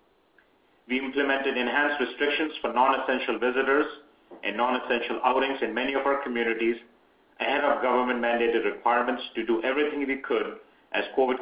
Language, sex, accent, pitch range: English, male, Indian, 120-140 Hz